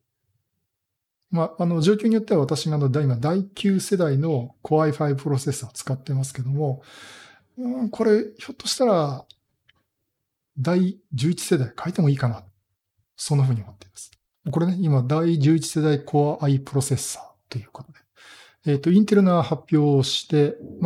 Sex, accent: male, native